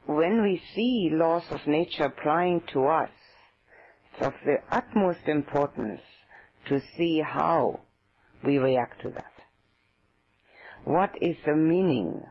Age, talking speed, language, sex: 50-69, 120 wpm, English, female